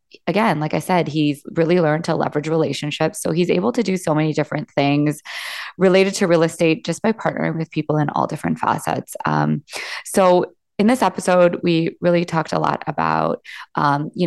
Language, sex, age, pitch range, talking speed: English, female, 20-39, 150-170 Hz, 190 wpm